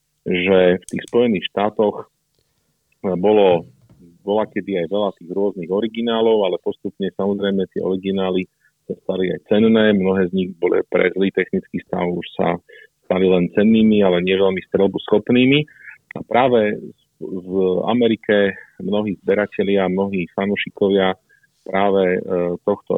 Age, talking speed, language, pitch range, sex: 40-59, 130 wpm, Slovak, 90-105 Hz, male